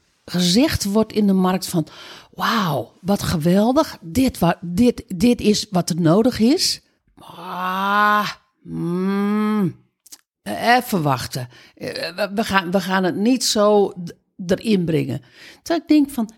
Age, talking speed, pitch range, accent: 50-69, 110 wpm, 165-225 Hz, Dutch